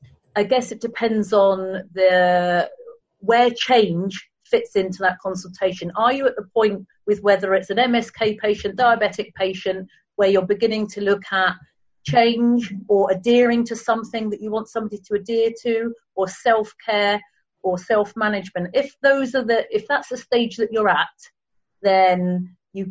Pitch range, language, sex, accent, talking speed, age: 175-215 Hz, English, female, British, 155 wpm, 40-59